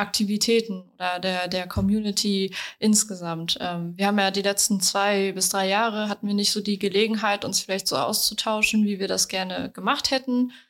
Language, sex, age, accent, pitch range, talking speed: German, female, 20-39, German, 190-220 Hz, 180 wpm